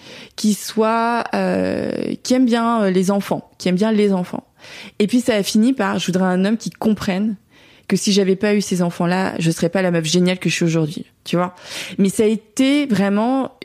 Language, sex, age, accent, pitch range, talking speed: French, female, 20-39, French, 175-220 Hz, 220 wpm